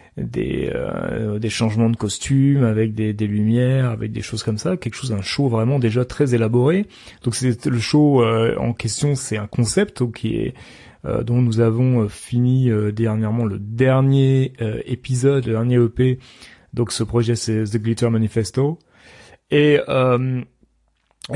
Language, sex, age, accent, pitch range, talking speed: French, male, 30-49, French, 115-130 Hz, 165 wpm